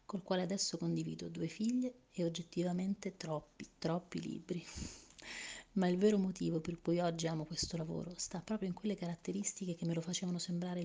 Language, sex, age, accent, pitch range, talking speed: Italian, female, 30-49, native, 165-190 Hz, 170 wpm